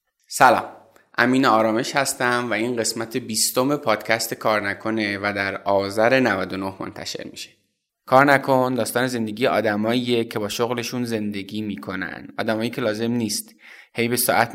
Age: 20-39